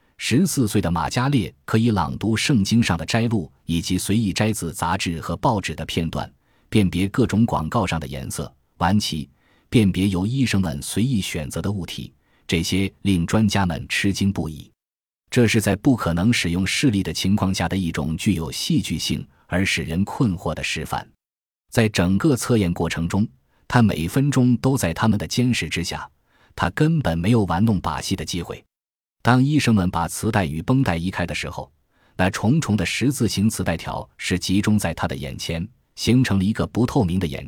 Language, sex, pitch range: Chinese, male, 85-110 Hz